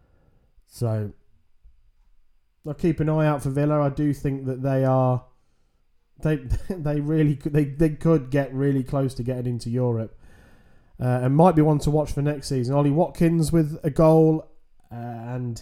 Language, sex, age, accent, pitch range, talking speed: English, male, 20-39, British, 100-140 Hz, 170 wpm